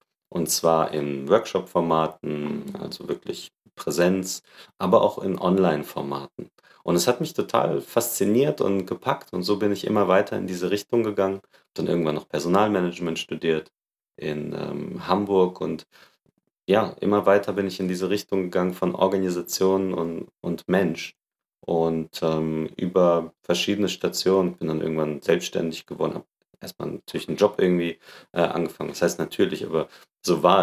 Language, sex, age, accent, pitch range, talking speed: German, male, 30-49, German, 80-95 Hz, 150 wpm